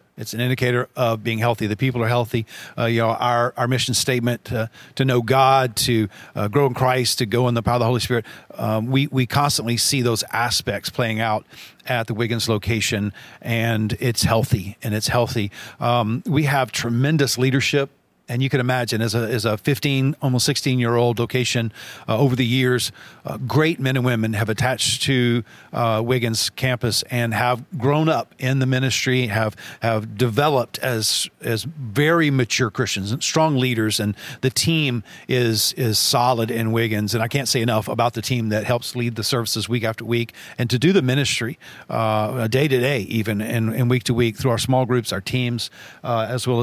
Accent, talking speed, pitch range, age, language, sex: American, 195 wpm, 115-130 Hz, 40-59, English, male